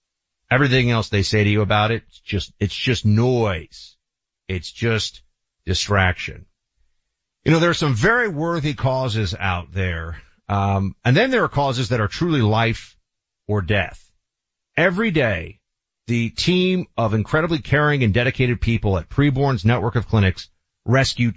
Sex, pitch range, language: male, 100-145 Hz, English